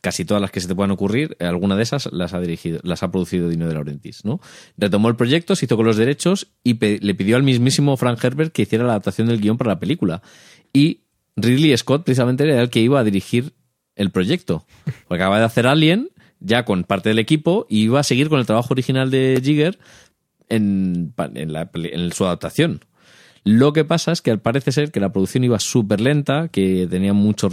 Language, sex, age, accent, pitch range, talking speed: Spanish, male, 30-49, Spanish, 100-130 Hz, 220 wpm